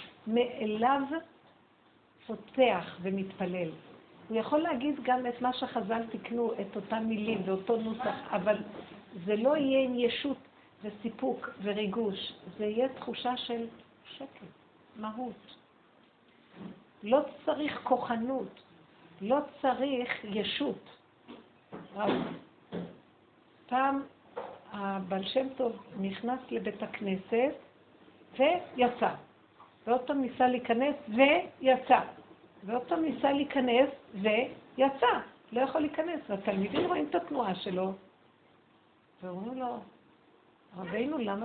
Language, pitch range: Hebrew, 210-265 Hz